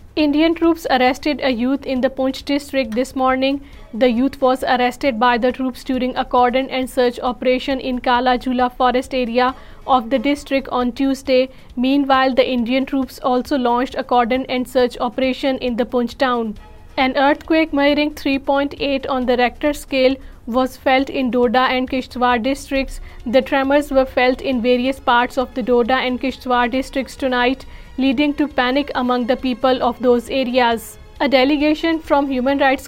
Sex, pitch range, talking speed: female, 250-270 Hz, 165 wpm